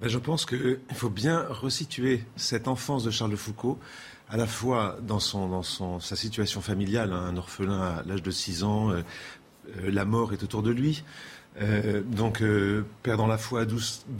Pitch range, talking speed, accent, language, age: 105-130 Hz, 195 wpm, French, French, 40-59